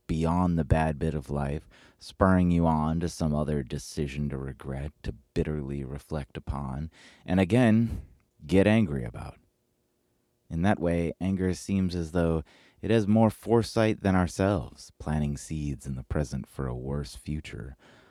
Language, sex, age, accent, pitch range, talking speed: English, male, 30-49, American, 70-85 Hz, 150 wpm